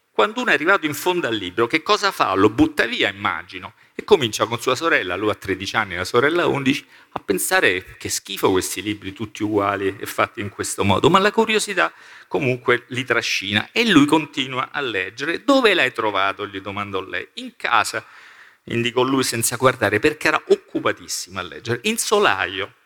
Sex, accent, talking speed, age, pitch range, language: male, native, 185 wpm, 50-69, 105-155 Hz, Italian